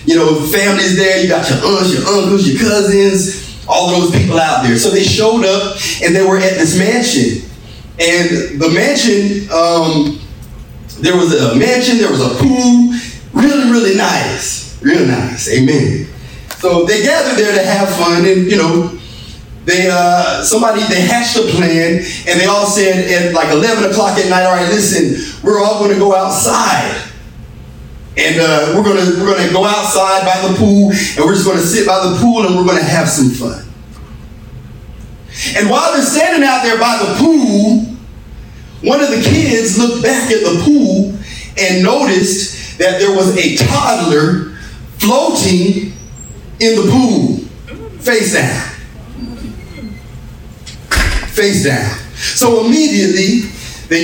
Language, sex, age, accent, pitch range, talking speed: English, male, 30-49, American, 175-225 Hz, 160 wpm